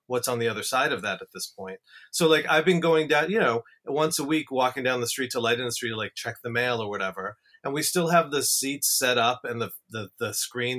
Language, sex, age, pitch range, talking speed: English, male, 30-49, 115-145 Hz, 265 wpm